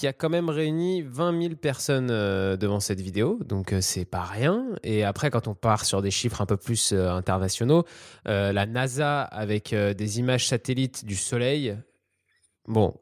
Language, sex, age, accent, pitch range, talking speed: French, male, 20-39, French, 105-130 Hz, 170 wpm